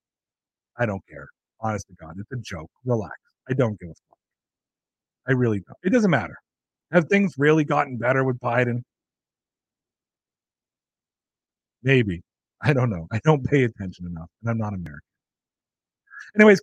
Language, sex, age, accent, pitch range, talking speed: English, male, 40-59, American, 110-160 Hz, 150 wpm